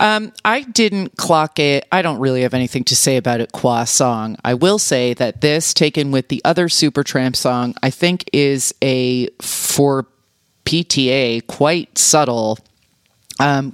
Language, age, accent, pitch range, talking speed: English, 30-49, American, 125-155 Hz, 160 wpm